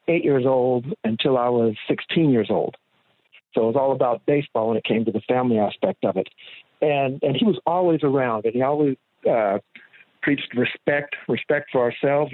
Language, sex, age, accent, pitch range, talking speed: English, male, 50-69, American, 120-145 Hz, 190 wpm